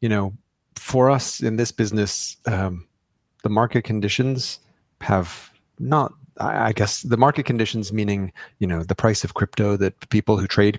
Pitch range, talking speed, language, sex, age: 100-115 Hz, 160 wpm, English, male, 30-49